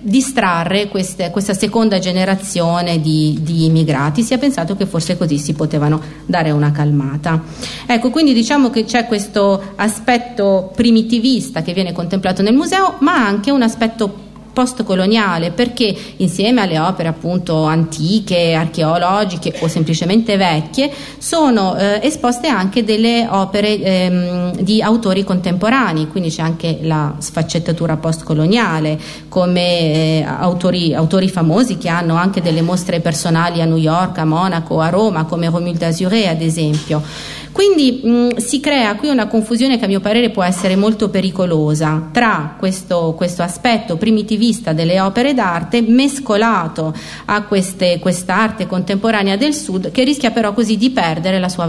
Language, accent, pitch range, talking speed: Italian, native, 165-225 Hz, 145 wpm